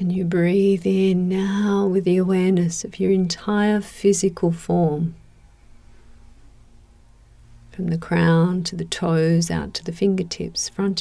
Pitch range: 115-180 Hz